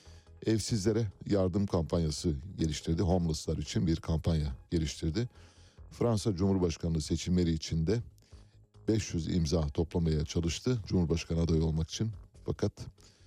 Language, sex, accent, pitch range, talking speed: Turkish, male, native, 80-105 Hz, 105 wpm